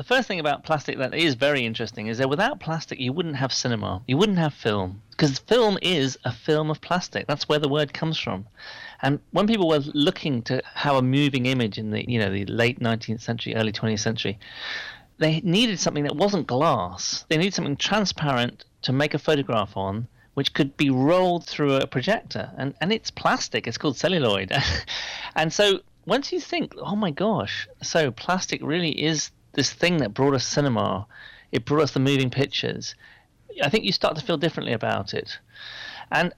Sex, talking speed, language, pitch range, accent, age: male, 195 wpm, English, 120-160 Hz, British, 40-59